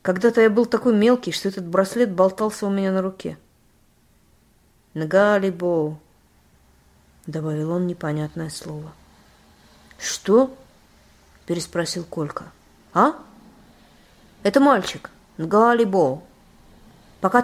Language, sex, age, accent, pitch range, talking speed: Russian, female, 30-49, native, 155-225 Hz, 95 wpm